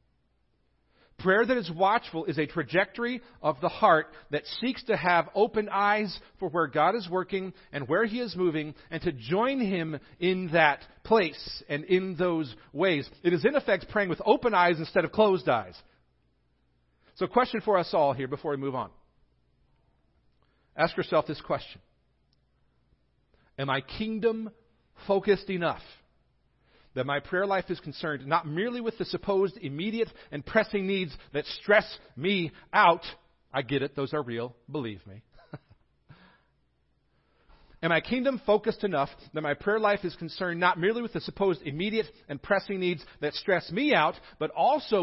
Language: English